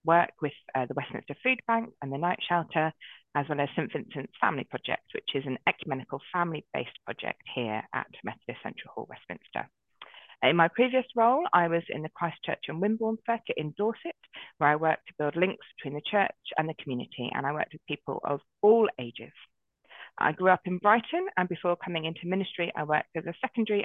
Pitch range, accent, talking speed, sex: 145-190 Hz, British, 200 wpm, female